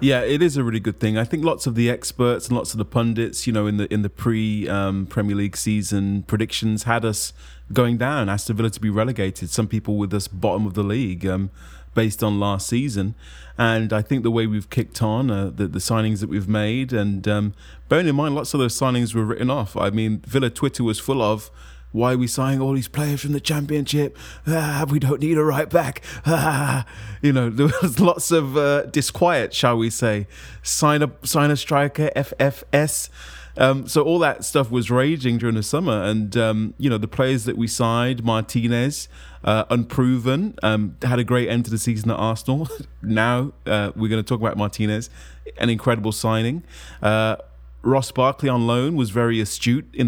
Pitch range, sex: 105-140 Hz, male